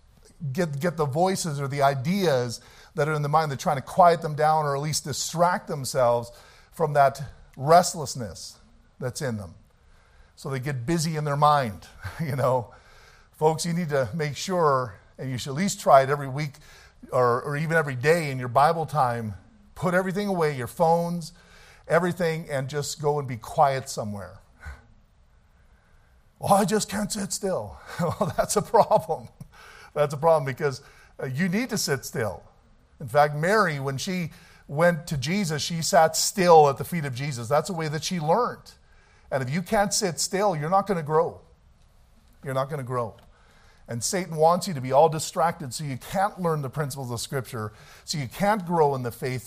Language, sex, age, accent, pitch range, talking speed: English, male, 50-69, American, 130-175 Hz, 190 wpm